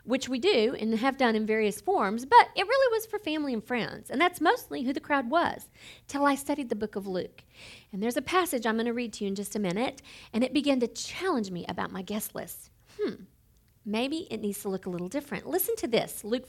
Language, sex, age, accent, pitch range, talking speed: English, female, 50-69, American, 215-310 Hz, 250 wpm